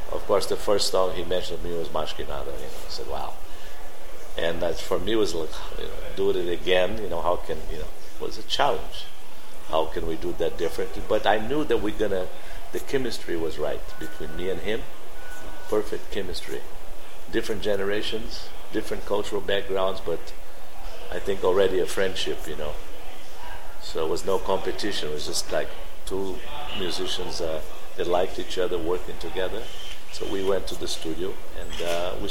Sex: male